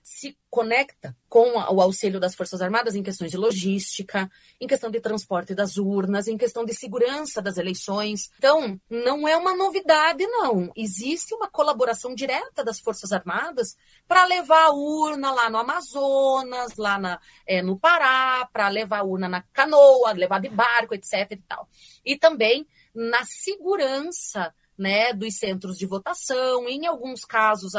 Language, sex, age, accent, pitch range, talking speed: Portuguese, female, 30-49, Brazilian, 200-310 Hz, 150 wpm